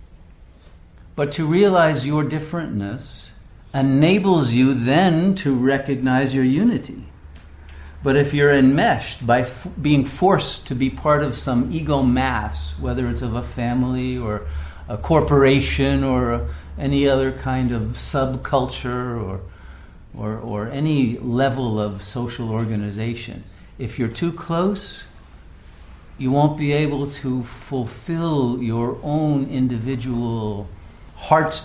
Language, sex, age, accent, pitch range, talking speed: English, male, 50-69, American, 105-145 Hz, 120 wpm